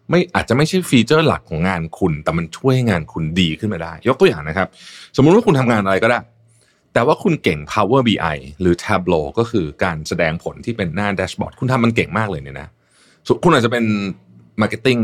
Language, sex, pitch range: Thai, male, 90-125 Hz